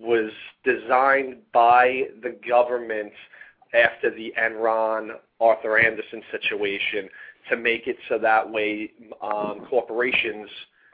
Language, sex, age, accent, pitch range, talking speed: English, male, 30-49, American, 110-135 Hz, 100 wpm